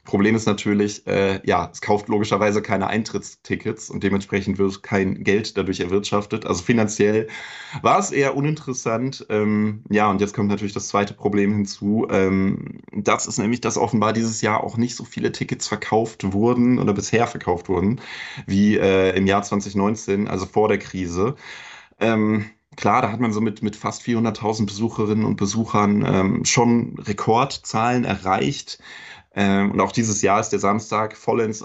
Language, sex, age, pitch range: German, male, 30-49, 95-110 Hz